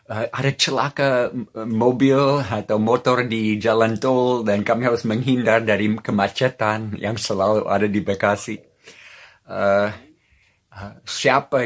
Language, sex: Indonesian, male